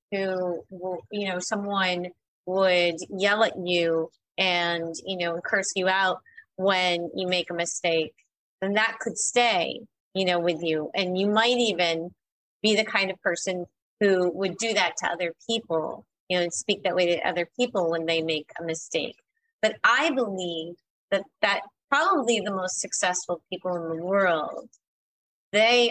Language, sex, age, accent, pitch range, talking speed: English, female, 30-49, American, 175-220 Hz, 165 wpm